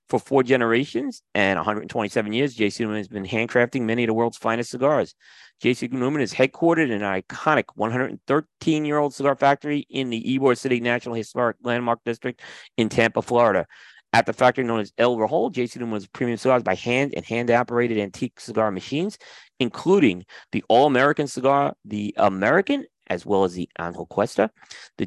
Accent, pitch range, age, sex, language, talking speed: American, 115-140 Hz, 40-59, male, English, 175 wpm